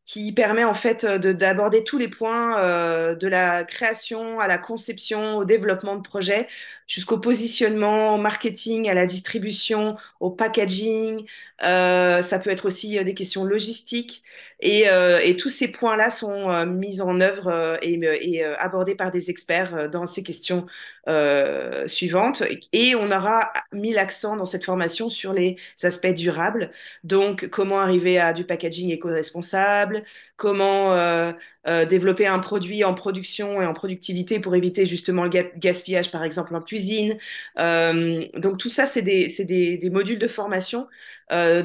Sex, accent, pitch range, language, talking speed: female, French, 175-215 Hz, French, 155 wpm